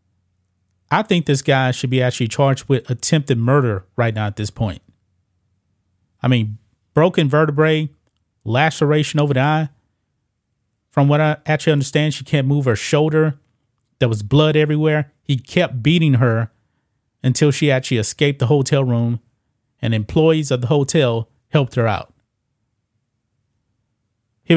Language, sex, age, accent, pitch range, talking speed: English, male, 30-49, American, 115-150 Hz, 140 wpm